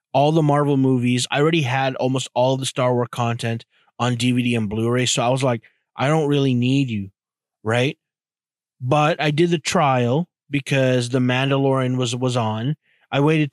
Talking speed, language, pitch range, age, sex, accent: 180 wpm, English, 120-150 Hz, 20-39, male, American